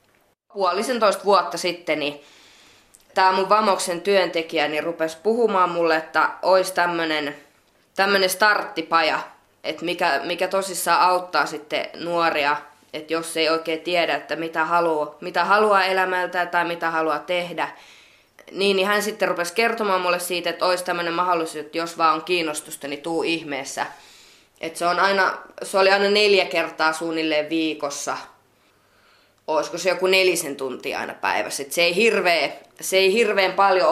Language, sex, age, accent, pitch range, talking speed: Finnish, female, 20-39, native, 160-190 Hz, 145 wpm